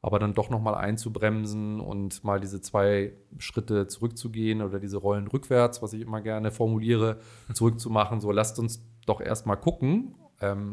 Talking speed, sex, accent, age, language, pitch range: 160 wpm, male, German, 30-49, German, 100-120 Hz